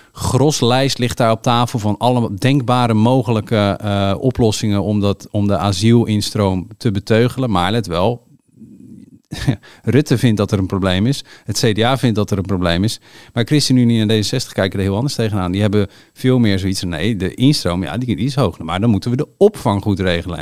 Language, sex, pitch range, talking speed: Dutch, male, 105-140 Hz, 195 wpm